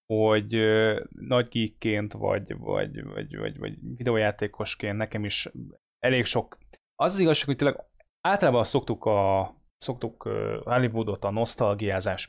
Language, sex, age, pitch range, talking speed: Hungarian, male, 20-39, 105-130 Hz, 115 wpm